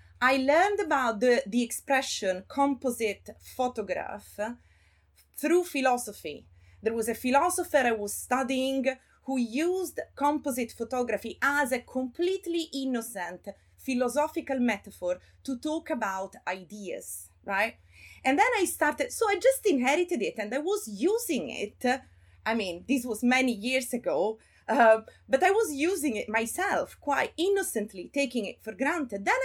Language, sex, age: English, female, 30-49